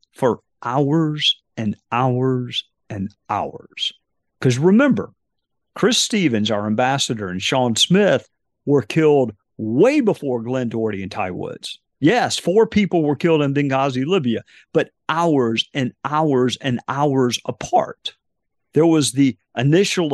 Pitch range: 120-150 Hz